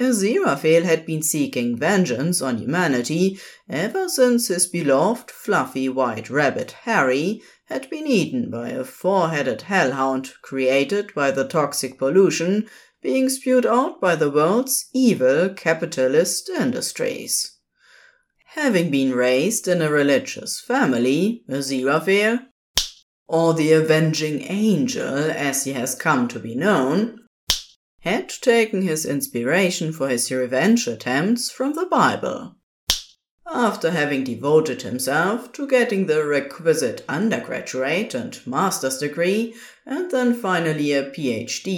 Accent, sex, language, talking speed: German, female, English, 120 wpm